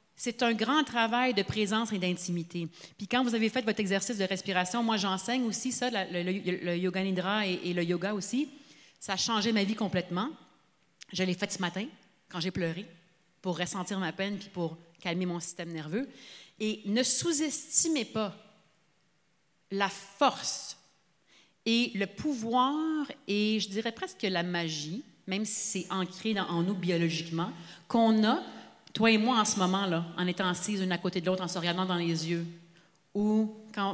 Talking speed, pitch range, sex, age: 180 wpm, 180-230 Hz, female, 40-59